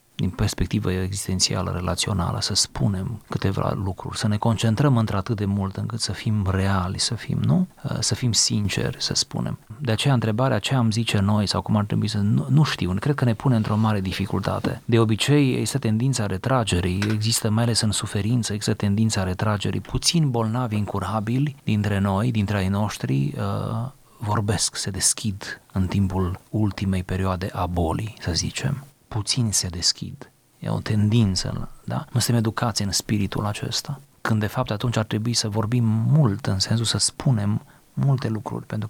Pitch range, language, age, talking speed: 100-125 Hz, Romanian, 30-49, 170 wpm